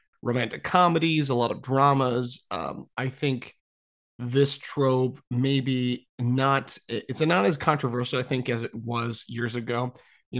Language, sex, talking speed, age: English, male, 145 wpm, 30-49